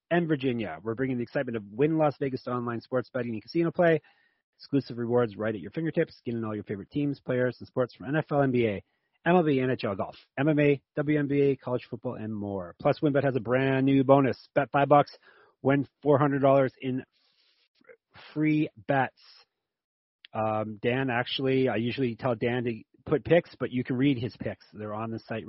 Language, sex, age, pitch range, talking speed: English, male, 30-49, 115-140 Hz, 190 wpm